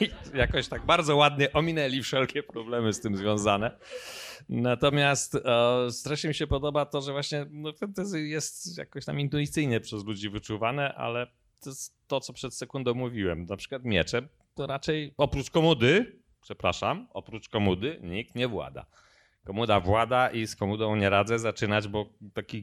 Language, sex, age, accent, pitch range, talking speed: Polish, male, 30-49, native, 100-150 Hz, 160 wpm